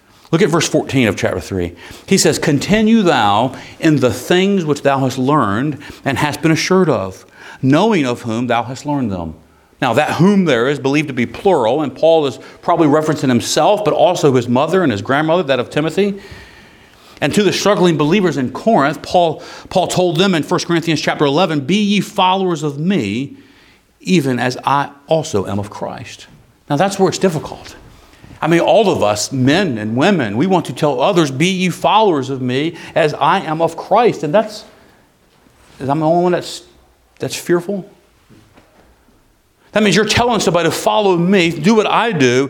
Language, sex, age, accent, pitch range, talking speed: English, male, 50-69, American, 125-180 Hz, 185 wpm